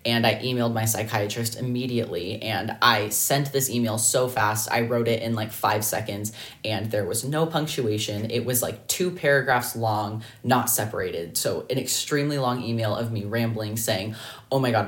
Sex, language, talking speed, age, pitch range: female, English, 180 wpm, 20-39, 110-125 Hz